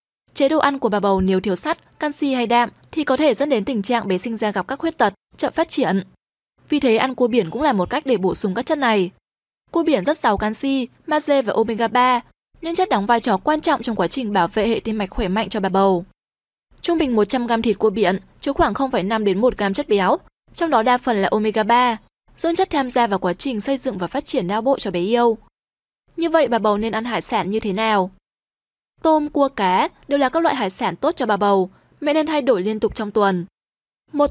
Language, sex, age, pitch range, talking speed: Vietnamese, female, 20-39, 205-280 Hz, 240 wpm